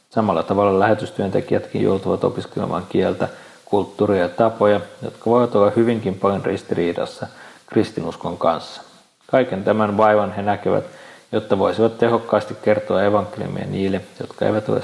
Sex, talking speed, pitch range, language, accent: male, 125 wpm, 100-115 Hz, Finnish, native